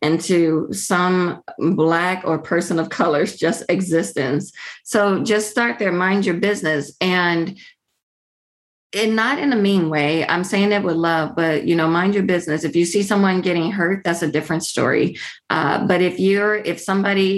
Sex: female